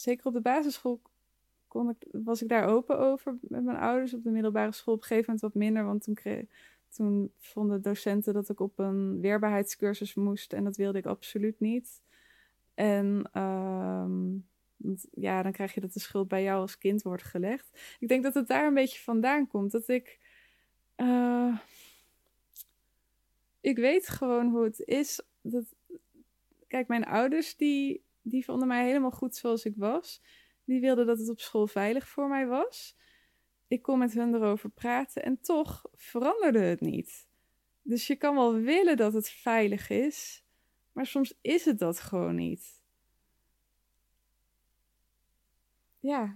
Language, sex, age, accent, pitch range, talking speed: Dutch, female, 20-39, Dutch, 210-265 Hz, 165 wpm